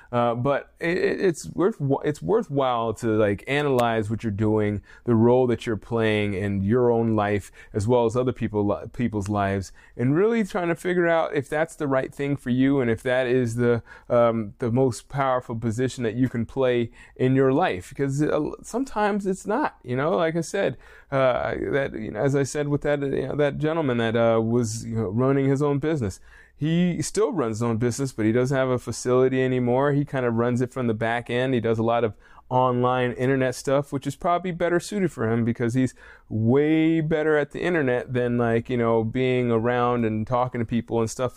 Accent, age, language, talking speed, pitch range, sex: American, 20-39, English, 215 wpm, 115-145 Hz, male